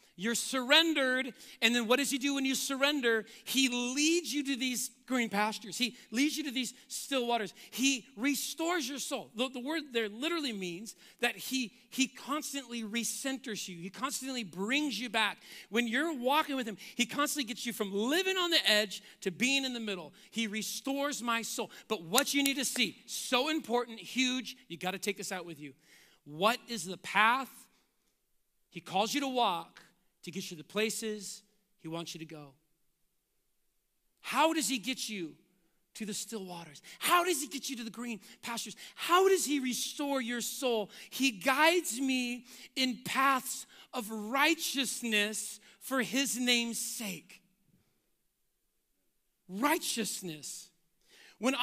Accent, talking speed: American, 165 wpm